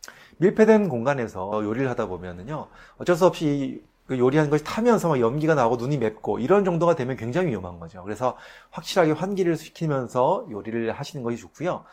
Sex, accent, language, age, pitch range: male, native, Korean, 30-49, 110-175 Hz